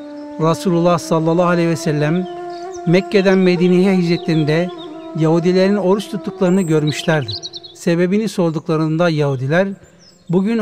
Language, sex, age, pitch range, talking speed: Turkish, male, 60-79, 165-205 Hz, 90 wpm